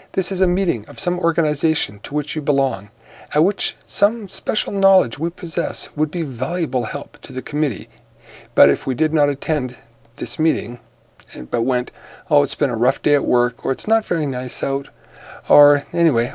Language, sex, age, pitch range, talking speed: English, male, 50-69, 125-170 Hz, 190 wpm